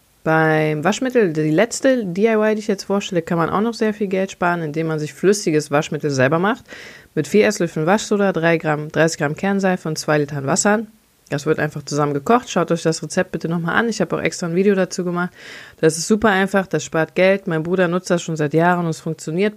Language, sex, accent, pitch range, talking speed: German, female, German, 160-200 Hz, 225 wpm